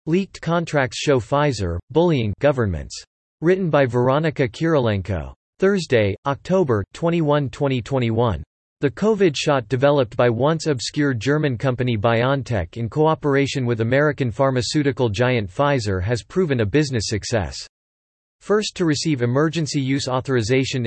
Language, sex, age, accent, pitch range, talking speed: English, male, 40-59, American, 115-150 Hz, 120 wpm